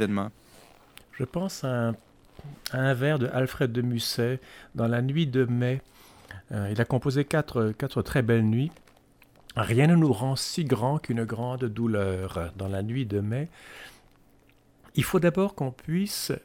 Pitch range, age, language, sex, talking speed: 105-145 Hz, 50-69, French, male, 170 wpm